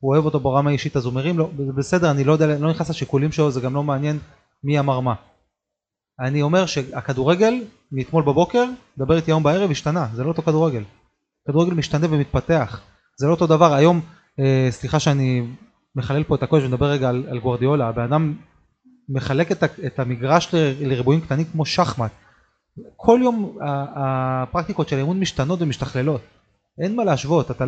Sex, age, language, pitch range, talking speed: male, 20-39, Hebrew, 135-170 Hz, 165 wpm